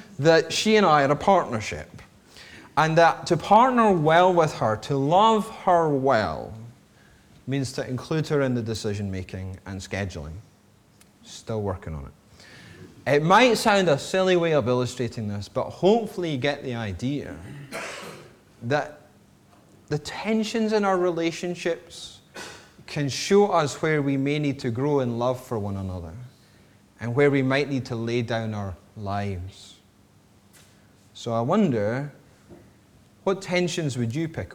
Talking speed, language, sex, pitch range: 150 wpm, English, male, 100-150 Hz